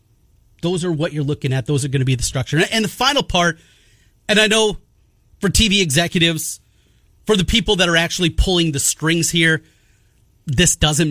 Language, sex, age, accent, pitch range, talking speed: English, male, 30-49, American, 115-190 Hz, 190 wpm